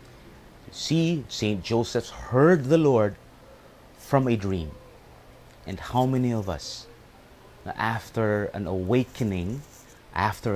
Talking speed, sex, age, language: 100 wpm, male, 30-49, English